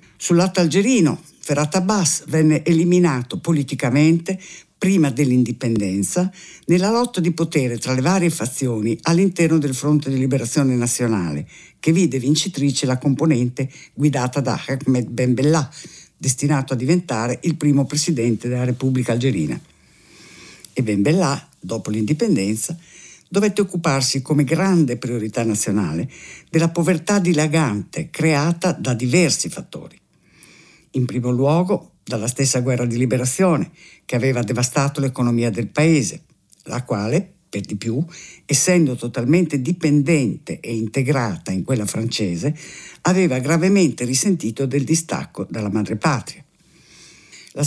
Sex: female